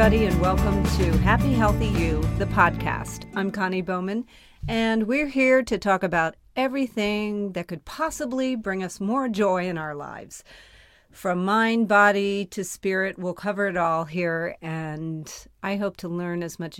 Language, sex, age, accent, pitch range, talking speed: English, female, 40-59, American, 165-200 Hz, 165 wpm